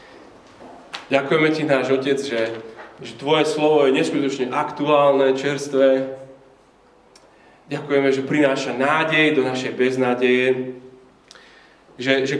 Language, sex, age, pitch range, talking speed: Slovak, male, 30-49, 110-135 Hz, 100 wpm